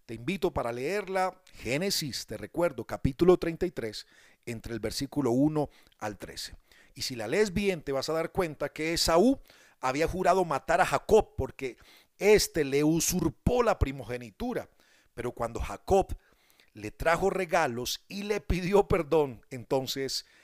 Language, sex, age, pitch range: Spanish, male, 40-59, 120-175 Hz